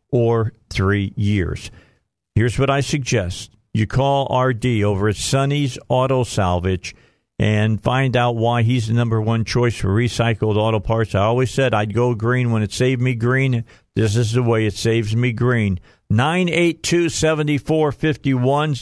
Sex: male